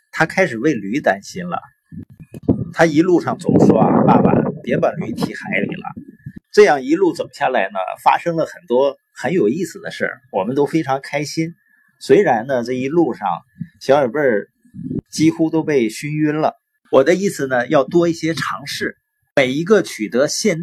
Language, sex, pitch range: Chinese, male, 145-210 Hz